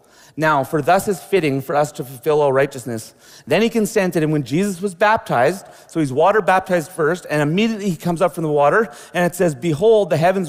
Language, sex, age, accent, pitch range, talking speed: English, male, 30-49, American, 145-190 Hz, 215 wpm